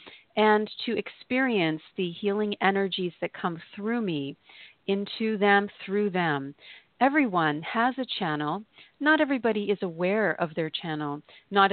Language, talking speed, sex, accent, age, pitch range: English, 135 wpm, female, American, 40-59, 170-215 Hz